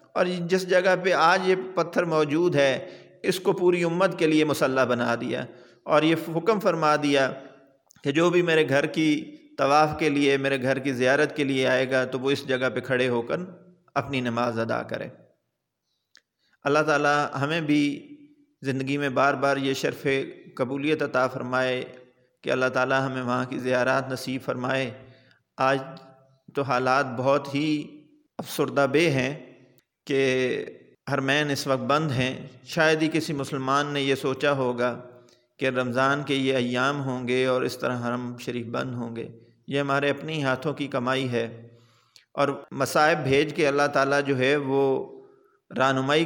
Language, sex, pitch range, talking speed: Urdu, male, 125-150 Hz, 165 wpm